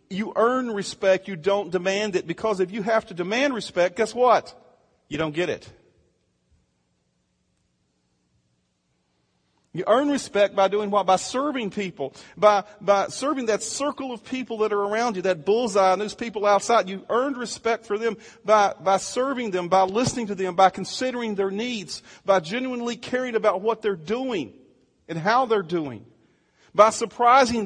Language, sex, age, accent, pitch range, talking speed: English, male, 40-59, American, 170-230 Hz, 165 wpm